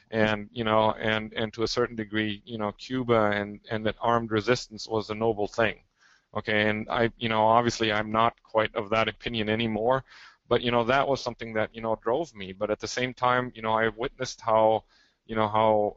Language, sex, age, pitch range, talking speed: English, male, 20-39, 105-120 Hz, 220 wpm